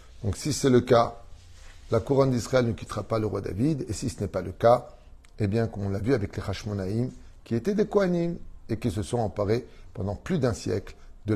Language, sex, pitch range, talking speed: French, male, 95-130 Hz, 230 wpm